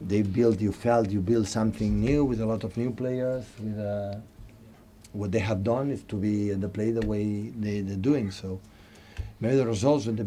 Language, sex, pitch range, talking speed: English, male, 105-120 Hz, 215 wpm